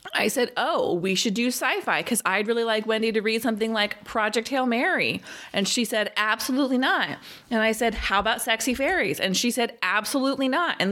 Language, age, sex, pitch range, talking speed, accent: English, 20-39, female, 185-260 Hz, 205 wpm, American